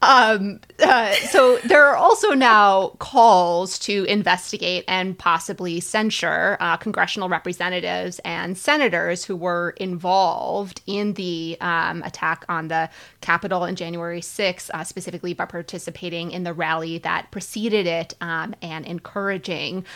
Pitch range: 175-200 Hz